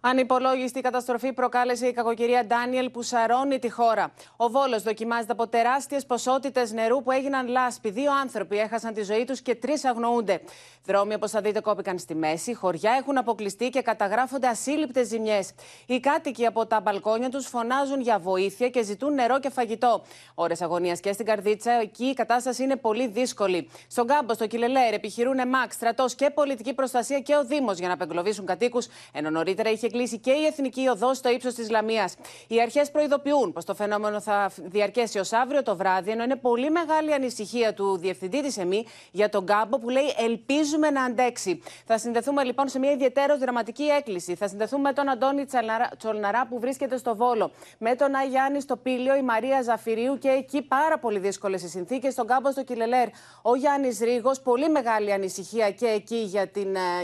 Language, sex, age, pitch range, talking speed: Greek, female, 30-49, 215-265 Hz, 180 wpm